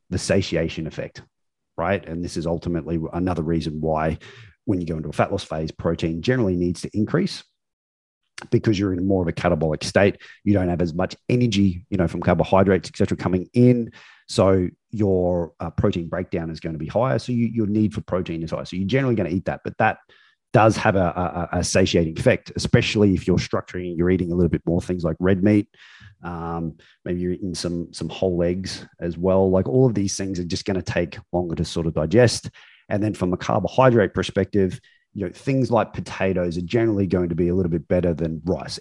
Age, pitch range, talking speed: 30-49, 85-105 Hz, 220 wpm